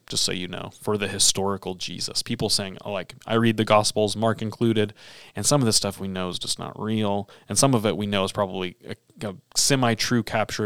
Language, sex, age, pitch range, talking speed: English, male, 30-49, 95-115 Hz, 220 wpm